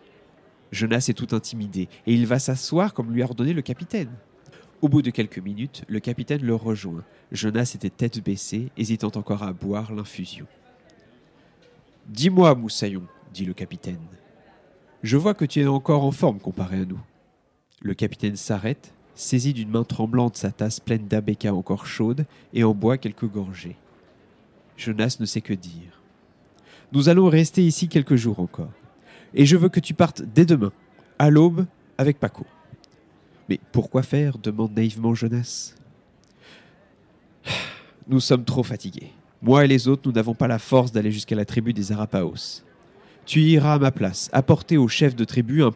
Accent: French